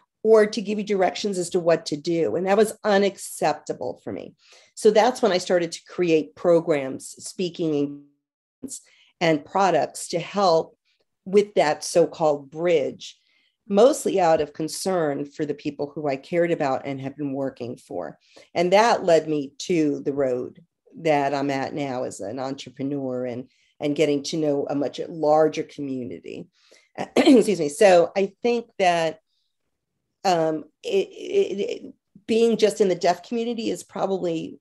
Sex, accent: female, American